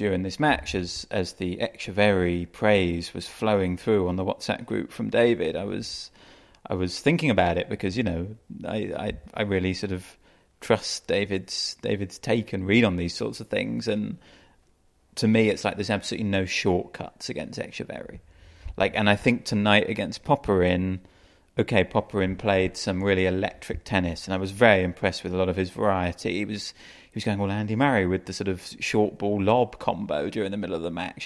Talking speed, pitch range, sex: 195 wpm, 90-110 Hz, male